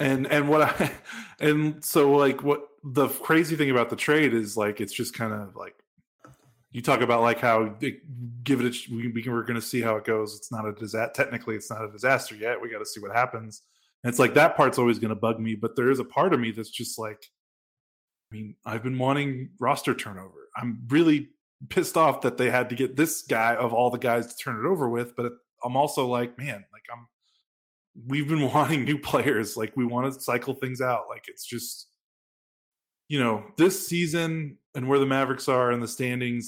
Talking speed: 215 wpm